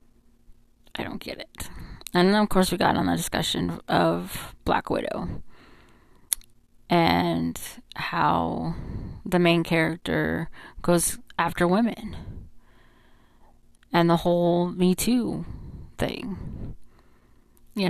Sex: female